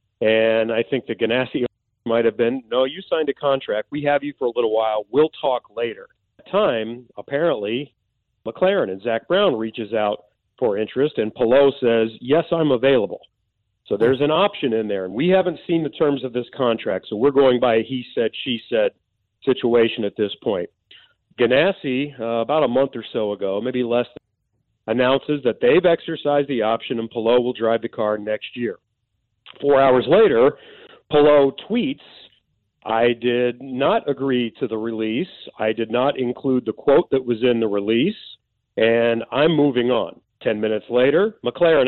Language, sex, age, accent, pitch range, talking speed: English, male, 40-59, American, 115-140 Hz, 180 wpm